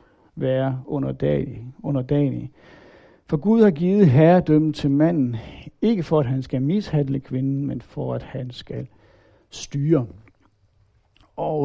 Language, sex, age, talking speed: Danish, male, 60-79, 125 wpm